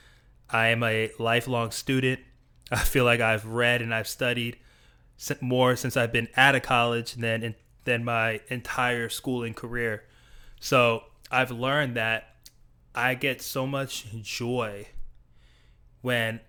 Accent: American